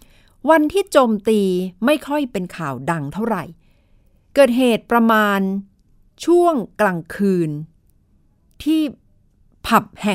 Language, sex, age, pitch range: Thai, female, 60-79, 155-210 Hz